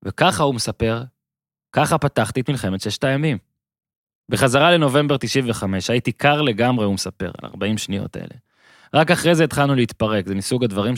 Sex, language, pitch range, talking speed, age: male, Hebrew, 105-130 Hz, 160 wpm, 20-39